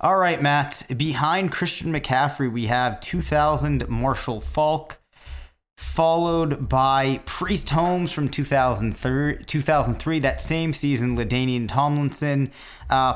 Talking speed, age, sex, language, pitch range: 110 wpm, 30-49, male, English, 120-145 Hz